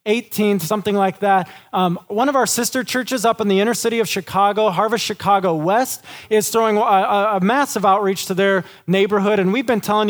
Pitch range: 190-225 Hz